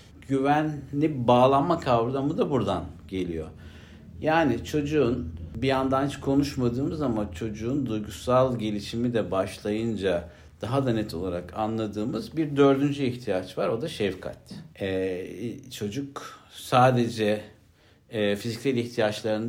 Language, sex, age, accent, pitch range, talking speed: Turkish, male, 60-79, native, 95-130 Hz, 110 wpm